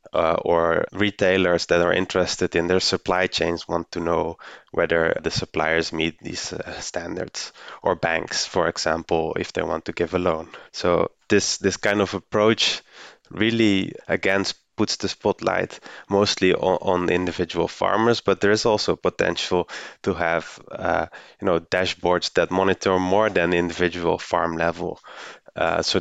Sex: male